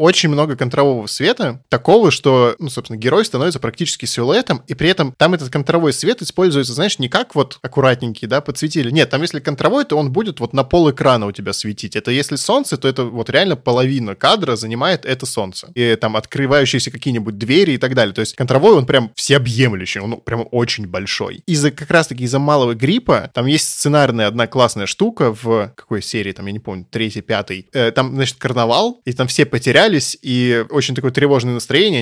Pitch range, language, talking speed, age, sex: 120-150 Hz, Russian, 195 wpm, 20-39, male